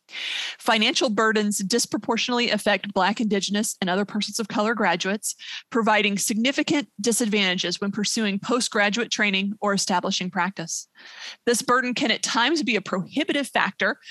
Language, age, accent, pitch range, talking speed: English, 30-49, American, 195-240 Hz, 130 wpm